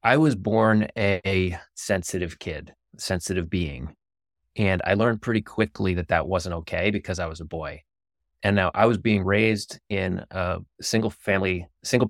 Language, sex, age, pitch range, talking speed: English, male, 20-39, 90-105 Hz, 170 wpm